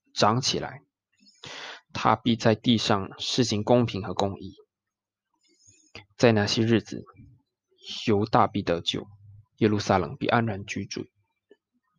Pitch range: 105-155 Hz